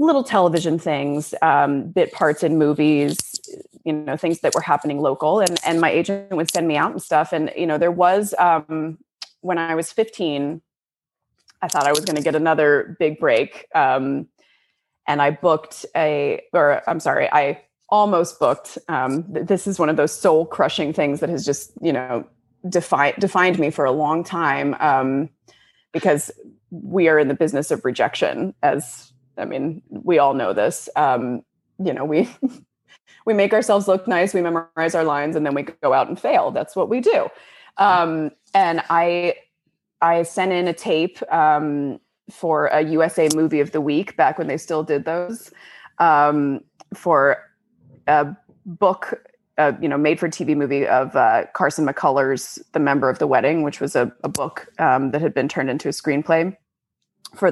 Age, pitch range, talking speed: 20-39, 145-180 Hz, 180 wpm